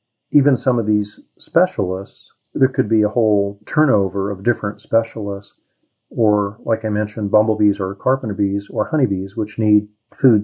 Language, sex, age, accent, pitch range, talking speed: English, male, 40-59, American, 100-115 Hz, 155 wpm